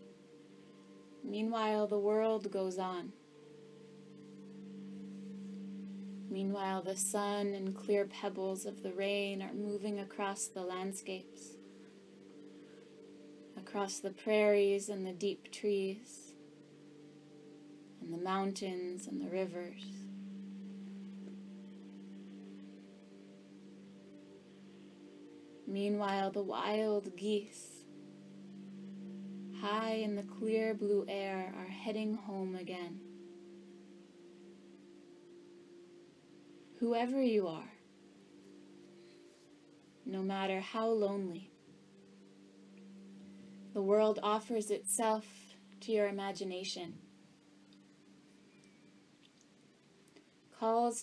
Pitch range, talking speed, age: 150-205 Hz, 70 wpm, 20-39